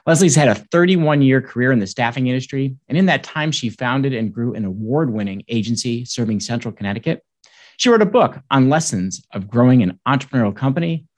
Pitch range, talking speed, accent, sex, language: 120-165 Hz, 195 wpm, American, male, English